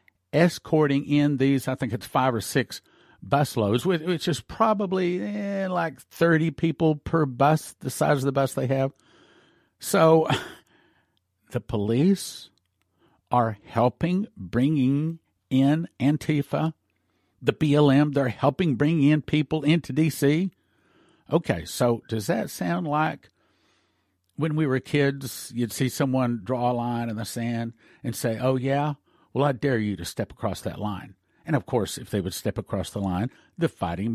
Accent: American